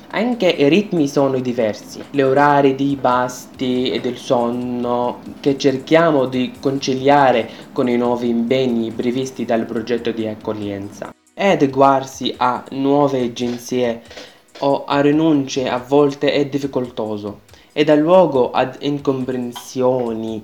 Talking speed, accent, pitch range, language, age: 125 wpm, native, 120-145 Hz, Italian, 20-39